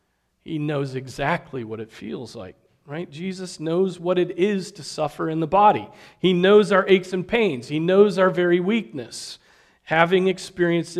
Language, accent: English, American